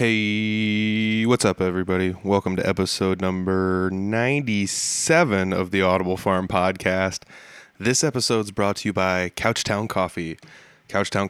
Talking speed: 125 wpm